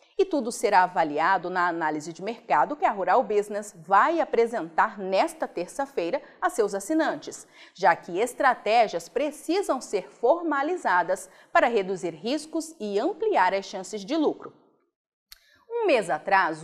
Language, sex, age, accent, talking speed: Portuguese, female, 40-59, Brazilian, 135 wpm